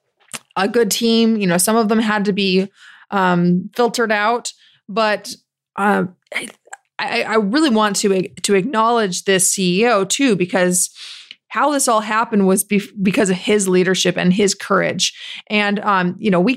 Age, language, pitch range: 30-49, English, 185-225 Hz